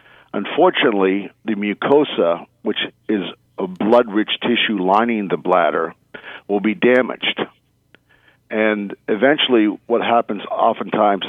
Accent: American